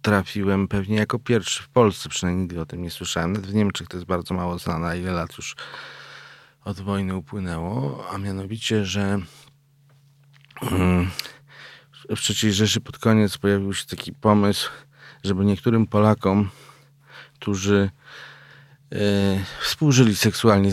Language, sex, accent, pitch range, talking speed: Polish, male, native, 90-110 Hz, 125 wpm